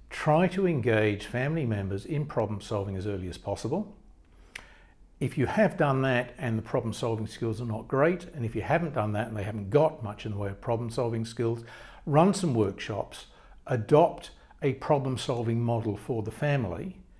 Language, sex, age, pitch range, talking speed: English, male, 60-79, 110-145 Hz, 175 wpm